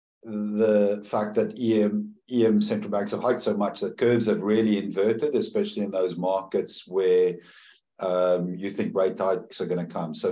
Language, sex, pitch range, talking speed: English, male, 95-115 Hz, 180 wpm